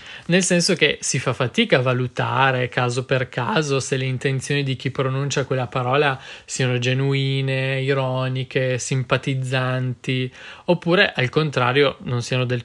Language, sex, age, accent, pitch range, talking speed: Italian, male, 20-39, native, 125-145 Hz, 140 wpm